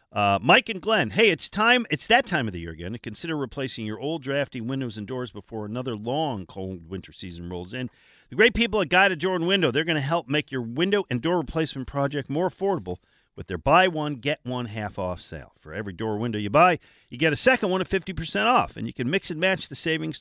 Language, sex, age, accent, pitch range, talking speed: English, male, 50-69, American, 110-165 Hz, 245 wpm